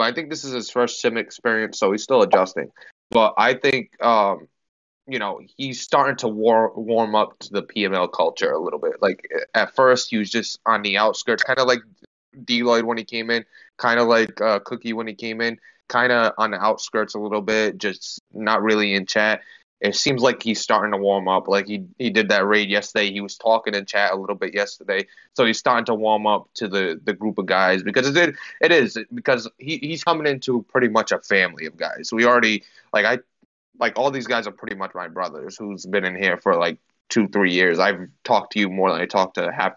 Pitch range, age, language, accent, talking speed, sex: 100-120 Hz, 20-39, English, American, 230 wpm, male